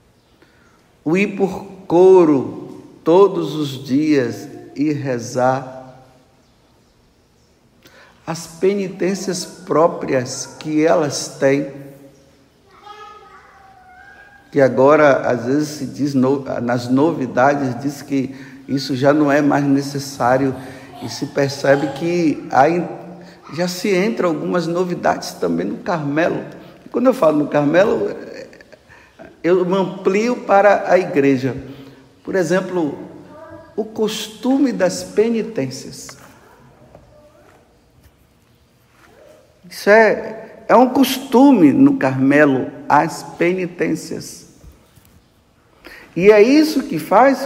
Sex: male